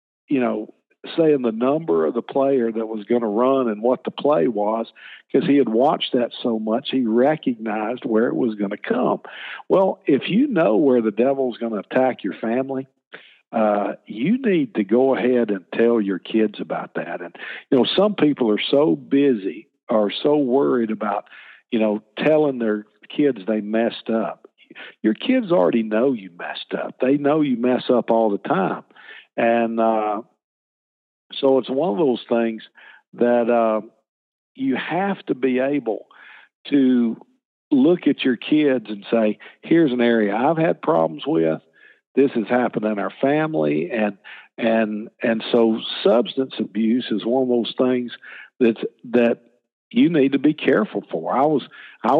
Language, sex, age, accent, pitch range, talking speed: English, male, 50-69, American, 110-135 Hz, 170 wpm